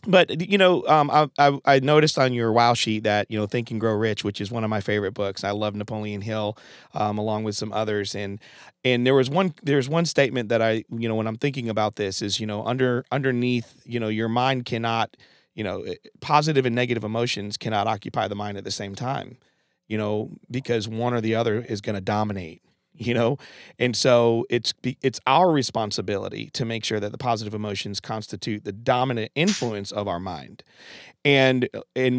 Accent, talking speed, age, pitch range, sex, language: American, 210 wpm, 40-59, 110-140 Hz, male, English